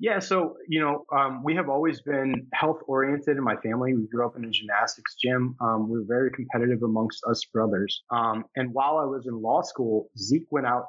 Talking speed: 220 wpm